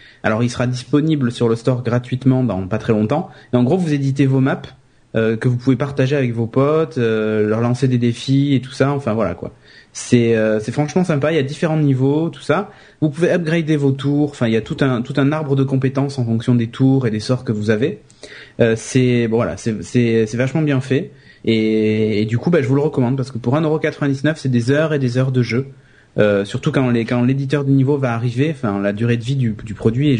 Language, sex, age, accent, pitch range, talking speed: French, male, 30-49, French, 115-140 Hz, 250 wpm